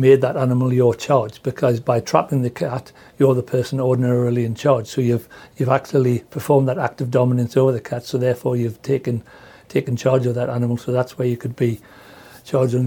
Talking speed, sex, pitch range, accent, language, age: 210 wpm, male, 120-135 Hz, British, English, 60-79